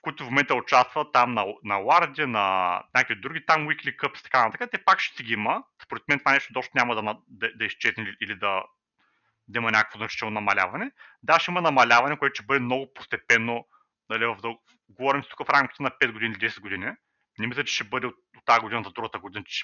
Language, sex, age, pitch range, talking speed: Bulgarian, male, 30-49, 110-135 Hz, 225 wpm